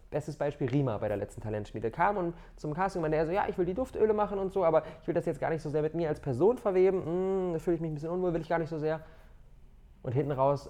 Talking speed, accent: 295 wpm, German